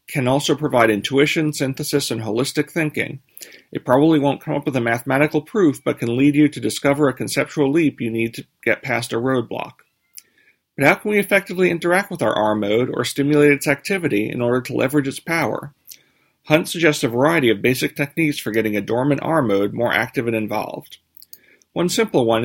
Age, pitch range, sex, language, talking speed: 40-59, 120-150 Hz, male, English, 190 wpm